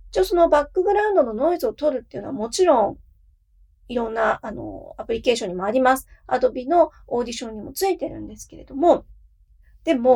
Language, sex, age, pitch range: Japanese, female, 40-59, 225-350 Hz